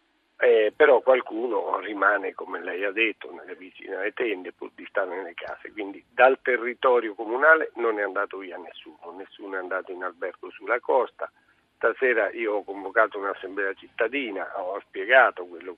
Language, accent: Italian, native